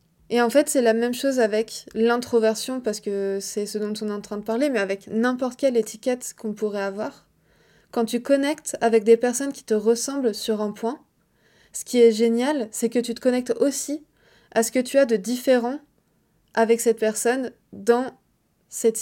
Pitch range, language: 225-265 Hz, French